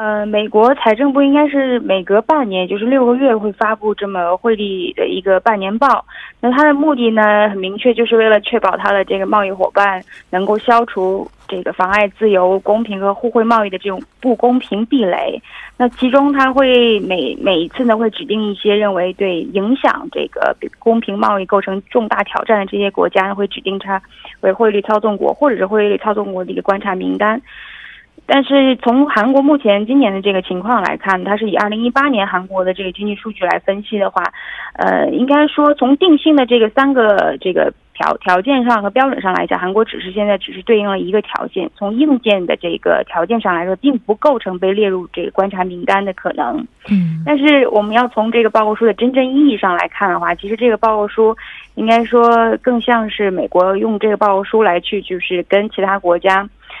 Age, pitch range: 20-39, 195-245 Hz